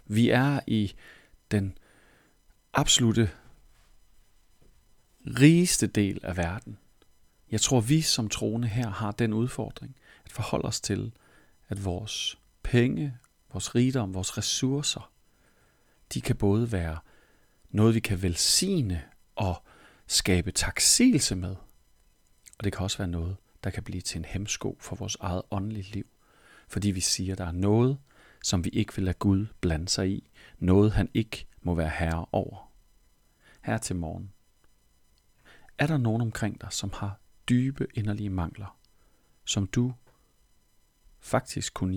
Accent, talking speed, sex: native, 140 wpm, male